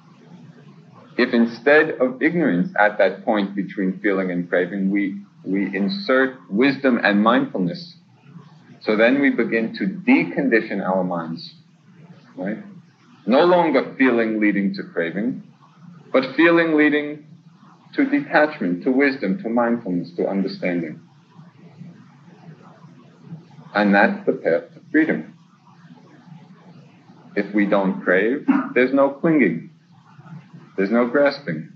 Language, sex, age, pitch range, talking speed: English, male, 40-59, 105-165 Hz, 110 wpm